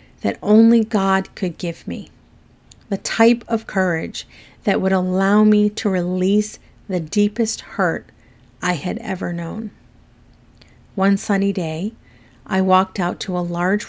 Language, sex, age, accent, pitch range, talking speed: English, female, 40-59, American, 175-205 Hz, 140 wpm